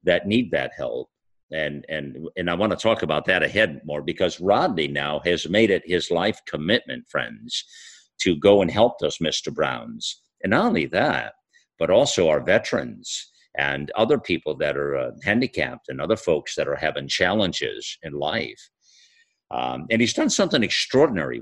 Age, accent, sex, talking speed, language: 50-69, American, male, 170 wpm, English